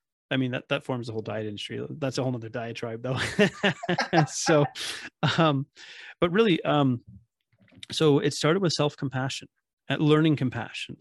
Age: 30-49